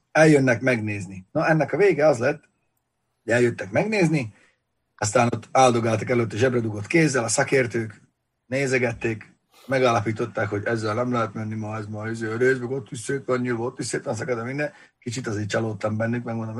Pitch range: 110-140 Hz